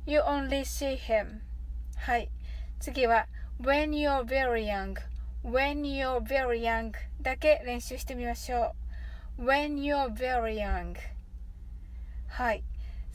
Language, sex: Japanese, female